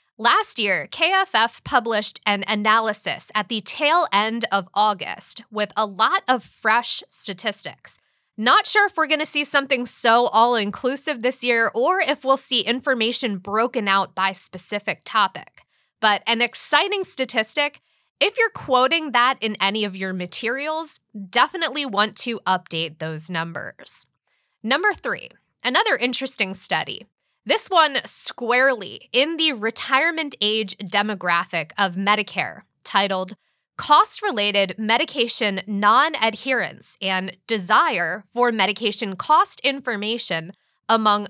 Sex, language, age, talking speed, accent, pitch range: female, English, 20-39, 125 wpm, American, 200-275 Hz